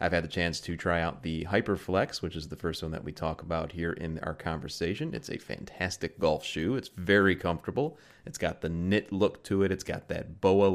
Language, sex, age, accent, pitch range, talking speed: English, male, 30-49, American, 85-105 Hz, 230 wpm